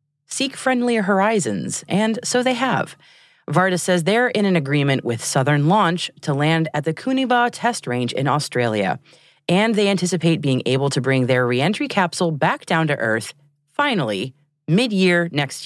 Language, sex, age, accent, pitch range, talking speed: English, female, 30-49, American, 130-195 Hz, 160 wpm